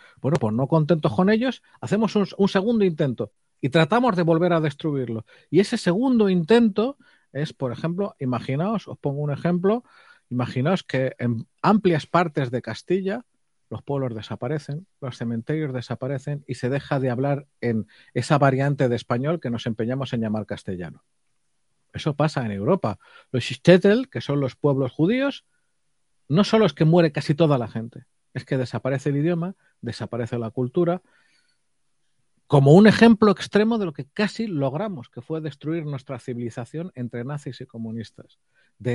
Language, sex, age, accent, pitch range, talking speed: Spanish, male, 40-59, Spanish, 125-190 Hz, 160 wpm